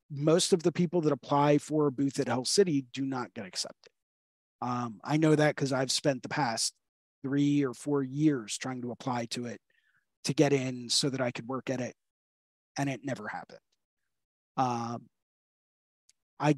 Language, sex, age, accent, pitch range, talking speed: English, male, 30-49, American, 125-150 Hz, 180 wpm